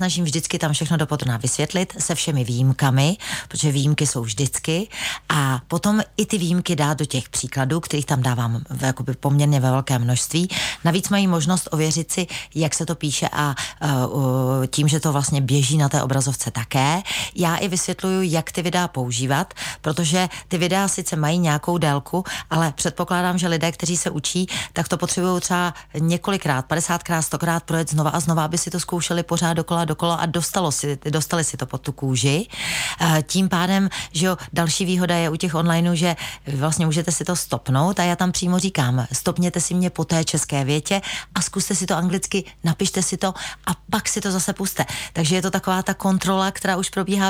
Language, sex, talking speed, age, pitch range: Czech, female, 190 wpm, 40-59, 150-185 Hz